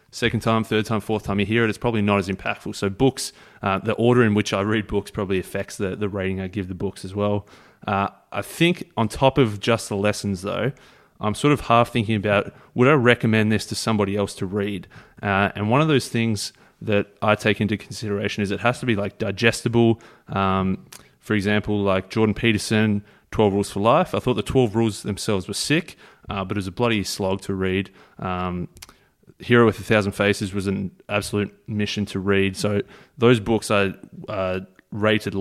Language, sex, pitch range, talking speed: English, male, 100-115 Hz, 210 wpm